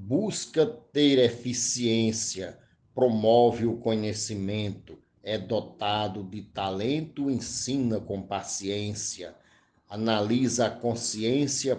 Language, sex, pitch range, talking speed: Portuguese, male, 100-120 Hz, 80 wpm